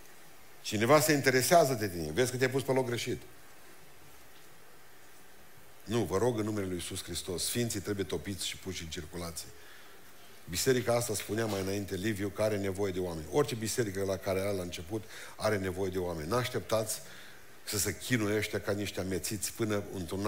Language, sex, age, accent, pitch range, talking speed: Romanian, male, 50-69, native, 90-120 Hz, 175 wpm